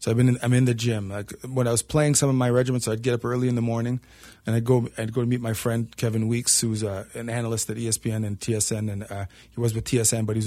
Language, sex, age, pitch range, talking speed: English, male, 30-49, 115-130 Hz, 290 wpm